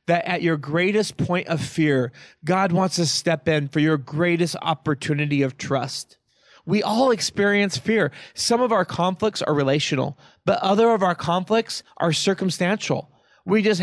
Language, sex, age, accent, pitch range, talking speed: English, male, 30-49, American, 150-190 Hz, 160 wpm